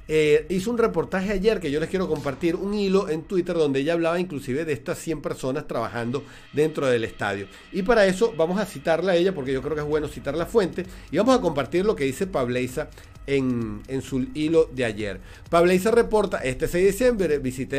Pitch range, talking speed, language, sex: 130-185 Hz, 215 wpm, Spanish, male